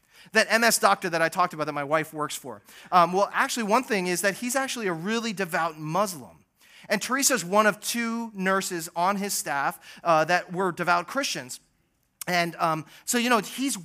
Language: English